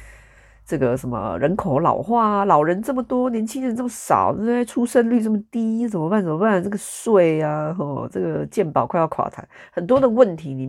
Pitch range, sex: 135-215 Hz, female